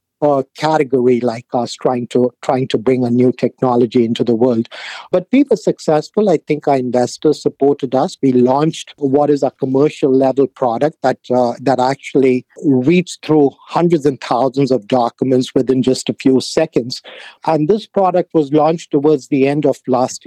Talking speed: 175 wpm